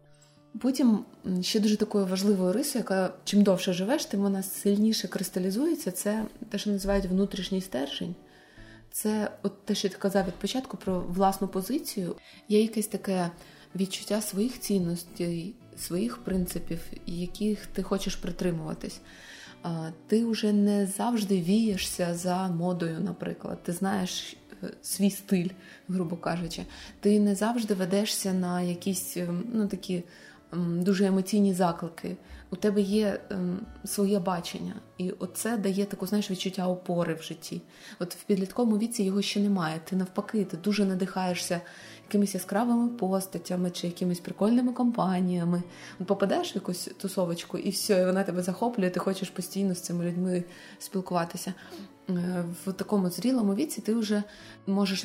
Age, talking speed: 20-39, 135 wpm